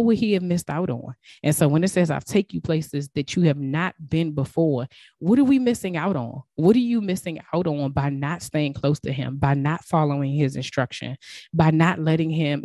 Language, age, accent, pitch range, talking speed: English, 20-39, American, 140-170 Hz, 235 wpm